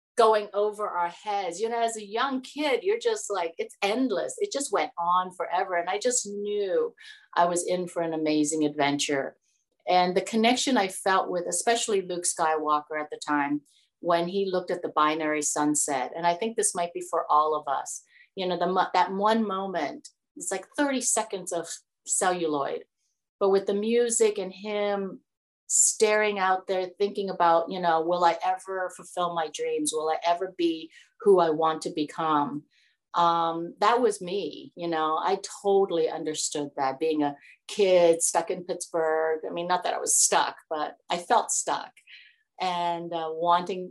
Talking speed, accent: 180 wpm, American